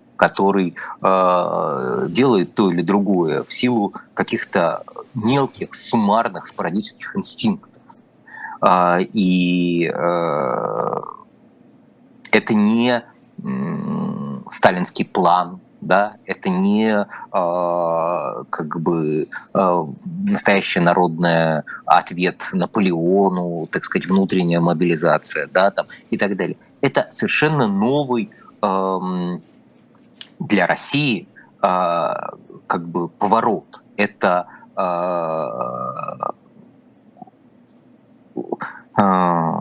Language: Russian